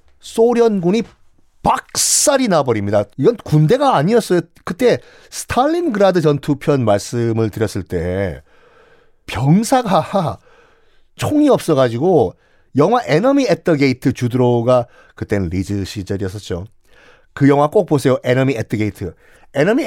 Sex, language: male, Korean